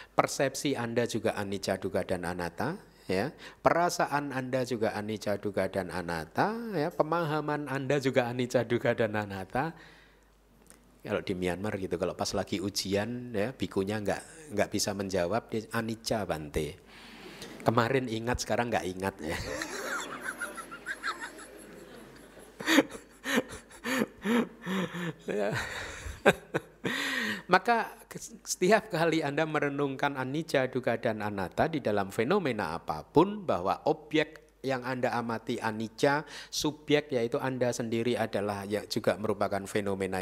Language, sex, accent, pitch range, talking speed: Indonesian, male, native, 110-150 Hz, 105 wpm